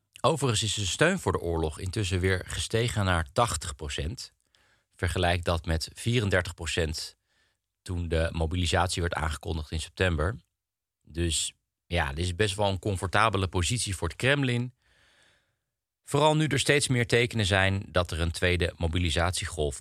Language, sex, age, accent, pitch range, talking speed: Dutch, male, 40-59, Dutch, 85-110 Hz, 140 wpm